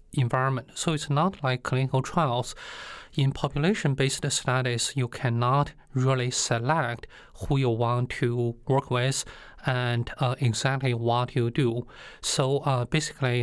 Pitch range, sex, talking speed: 120-140 Hz, male, 130 wpm